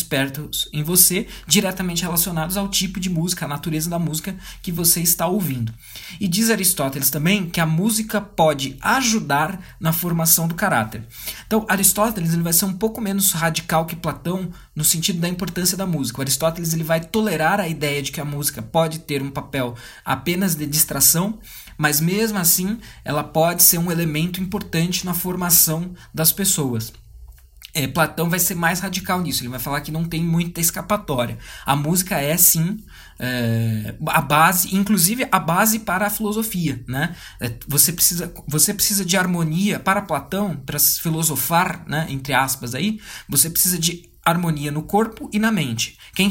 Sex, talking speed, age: male, 165 wpm, 20-39